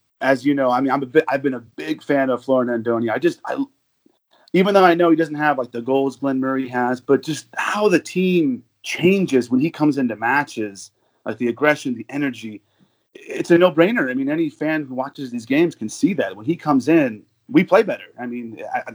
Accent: American